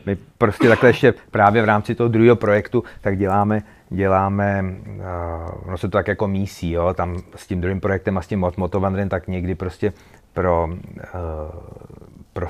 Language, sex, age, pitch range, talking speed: Czech, male, 30-49, 95-115 Hz, 175 wpm